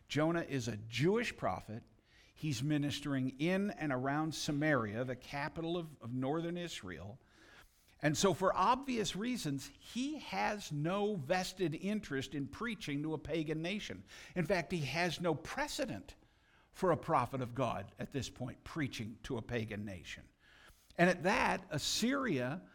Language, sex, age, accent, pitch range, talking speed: English, male, 60-79, American, 135-180 Hz, 150 wpm